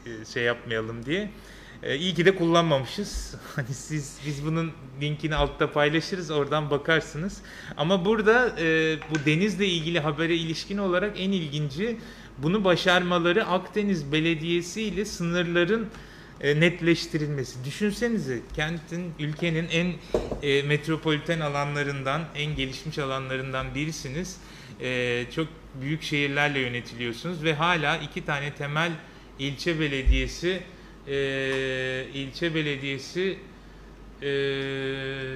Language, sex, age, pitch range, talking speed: Turkish, male, 30-49, 140-175 Hz, 105 wpm